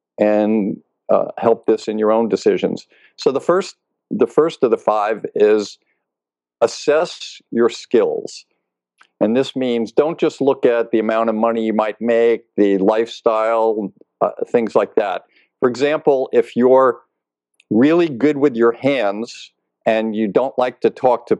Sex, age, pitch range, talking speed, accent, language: male, 50-69, 105-145 Hz, 155 wpm, American, English